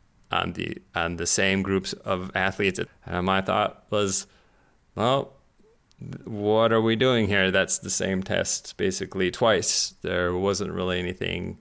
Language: English